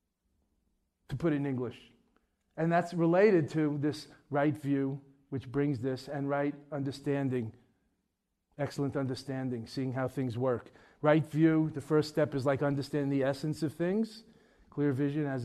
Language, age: English, 40-59